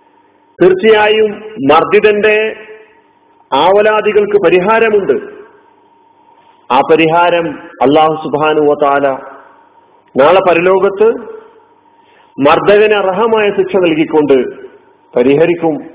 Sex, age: male, 40-59